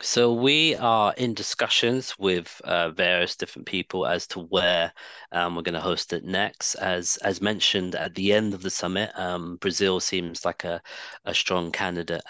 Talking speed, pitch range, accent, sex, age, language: 180 wpm, 85-100 Hz, British, male, 20-39, English